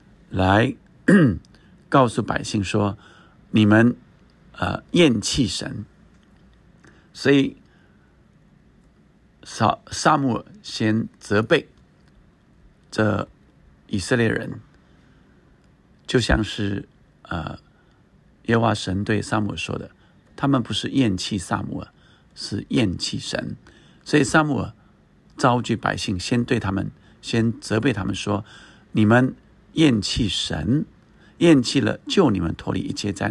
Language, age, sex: Chinese, 50-69, male